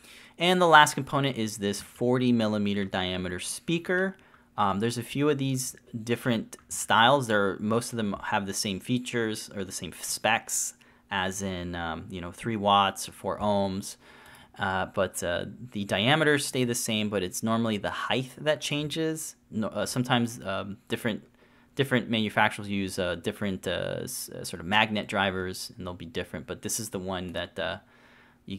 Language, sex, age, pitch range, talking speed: English, male, 30-49, 95-130 Hz, 170 wpm